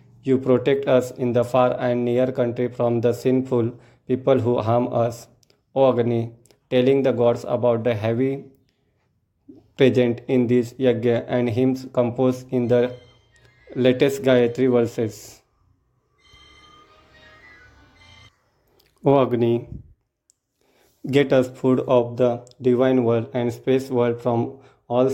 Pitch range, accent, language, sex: 120-130 Hz, Indian, English, male